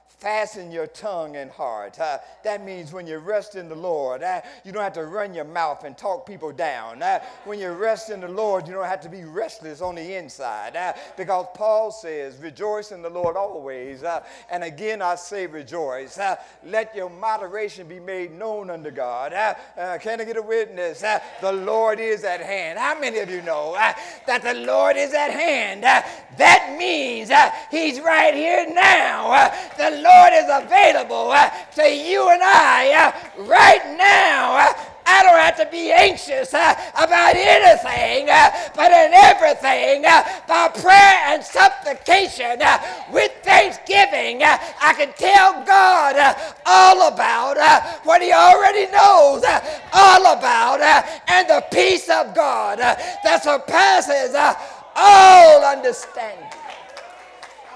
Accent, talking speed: American, 155 wpm